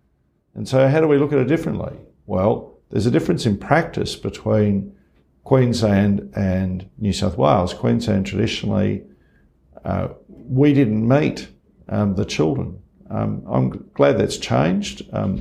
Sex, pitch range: male, 95-120 Hz